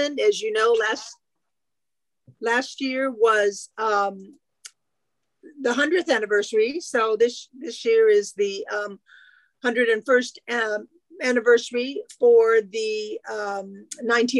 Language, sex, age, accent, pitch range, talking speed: English, female, 50-69, American, 215-290 Hz, 100 wpm